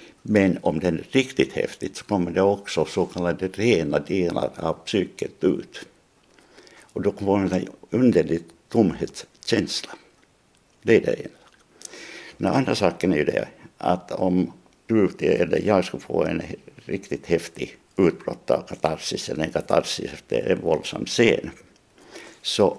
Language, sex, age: Finnish, male, 60-79